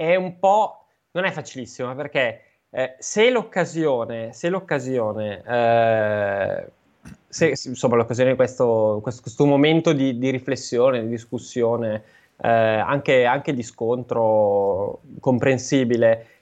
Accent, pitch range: native, 120-145 Hz